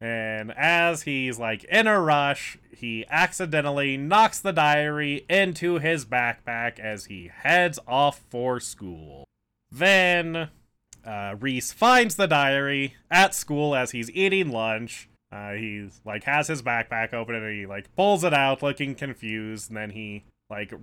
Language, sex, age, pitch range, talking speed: English, male, 20-39, 110-155 Hz, 150 wpm